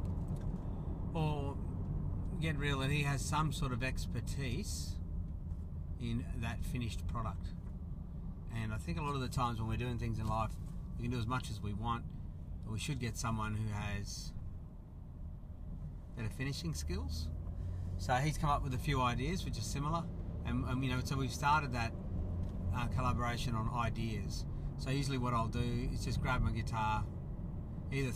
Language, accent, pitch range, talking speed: English, Australian, 85-125 Hz, 170 wpm